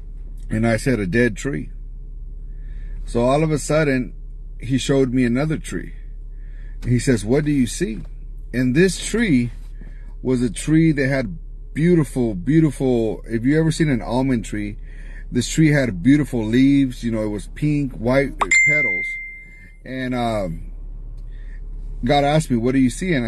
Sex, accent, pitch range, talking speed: male, American, 120-145 Hz, 155 wpm